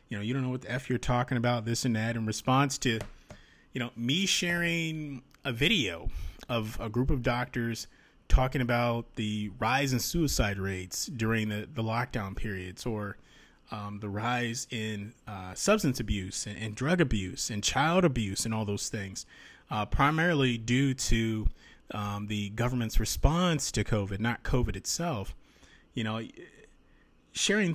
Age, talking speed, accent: 30-49, 160 wpm, American